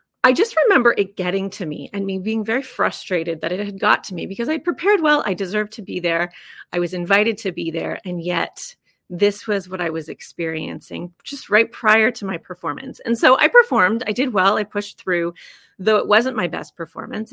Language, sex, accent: English, female, American